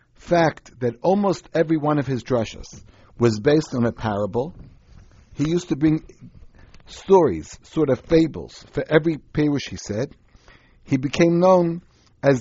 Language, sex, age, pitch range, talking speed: English, male, 60-79, 115-160 Hz, 145 wpm